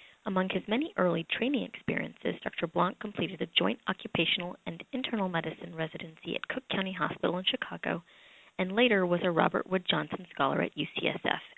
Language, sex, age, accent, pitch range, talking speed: English, female, 30-49, American, 165-215 Hz, 165 wpm